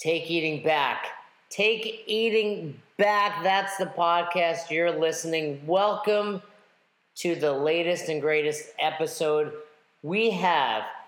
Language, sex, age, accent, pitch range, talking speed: English, male, 40-59, American, 150-195 Hz, 110 wpm